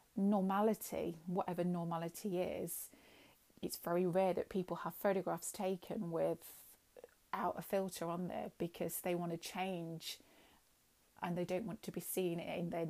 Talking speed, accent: 145 wpm, British